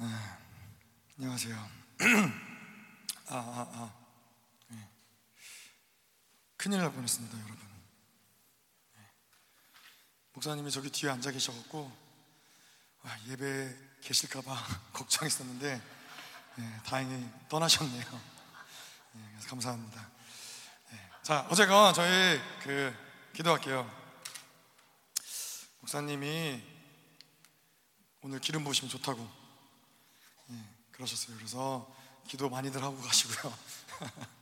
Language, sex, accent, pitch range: Korean, male, native, 125-155 Hz